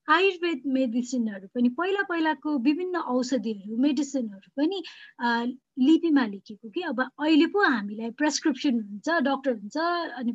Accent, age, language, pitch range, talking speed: native, 20-39, Kannada, 235-320 Hz, 70 wpm